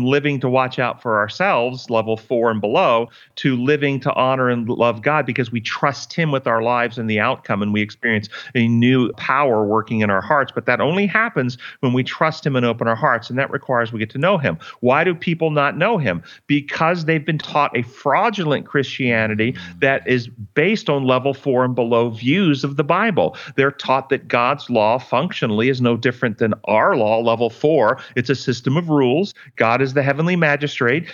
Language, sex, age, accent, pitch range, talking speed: English, male, 40-59, American, 125-165 Hz, 205 wpm